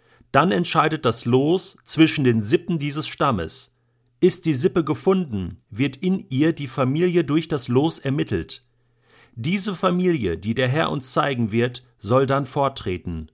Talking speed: 150 wpm